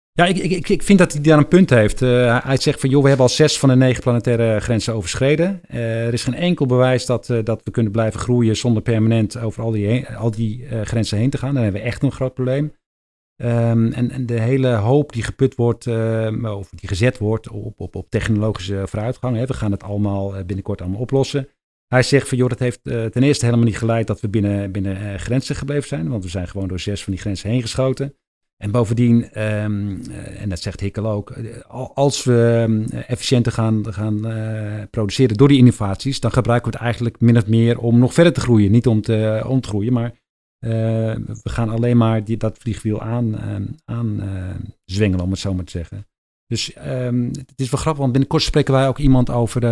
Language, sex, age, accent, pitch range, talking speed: Dutch, male, 50-69, Dutch, 110-130 Hz, 220 wpm